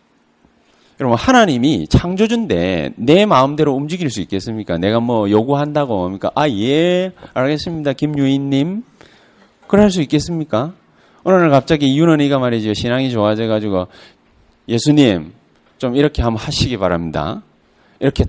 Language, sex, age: Korean, male, 30-49